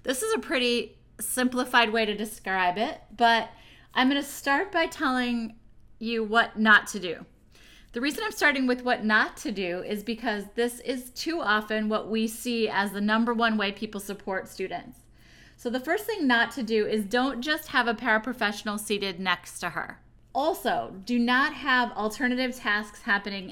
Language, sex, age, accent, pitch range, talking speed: English, female, 30-49, American, 205-250 Hz, 180 wpm